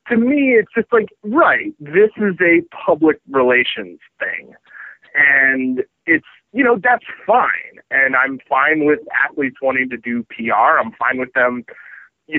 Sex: male